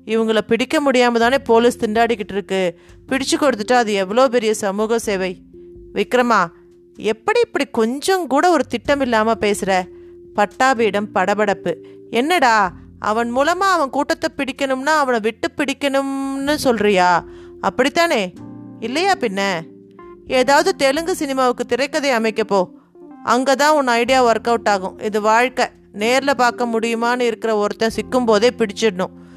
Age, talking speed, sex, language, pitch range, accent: 30-49, 125 wpm, female, Tamil, 205-275 Hz, native